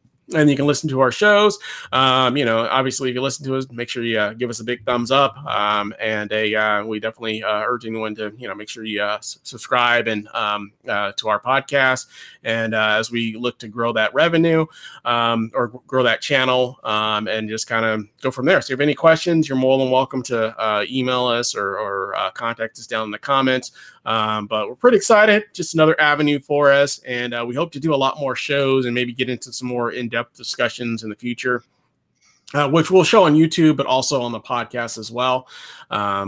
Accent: American